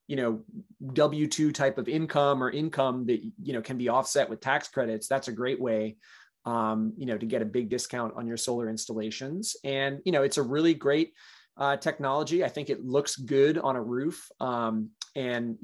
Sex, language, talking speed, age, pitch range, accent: male, English, 200 wpm, 20-39, 120-145 Hz, American